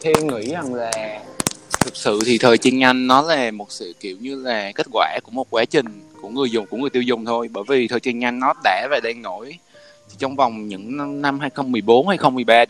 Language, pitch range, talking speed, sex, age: Vietnamese, 115-145 Hz, 230 wpm, male, 20-39